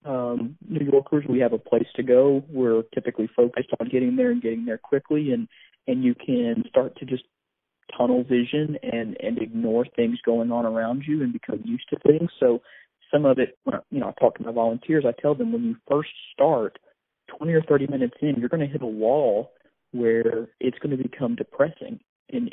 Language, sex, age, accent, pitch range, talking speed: English, male, 40-59, American, 115-150 Hz, 205 wpm